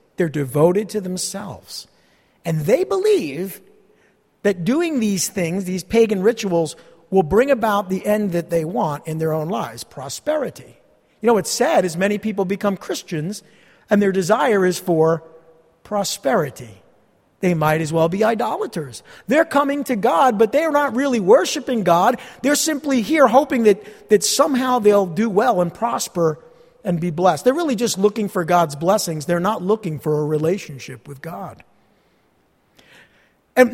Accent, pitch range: American, 165-225 Hz